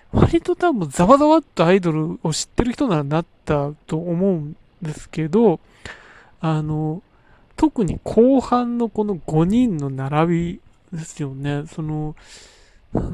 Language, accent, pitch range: Japanese, native, 155-245 Hz